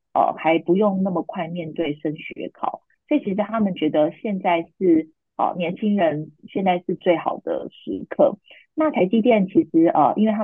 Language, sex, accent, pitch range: Chinese, female, native, 155-220 Hz